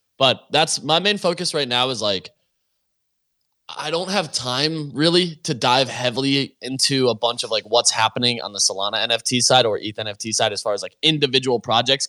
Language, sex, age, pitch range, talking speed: English, male, 20-39, 115-145 Hz, 195 wpm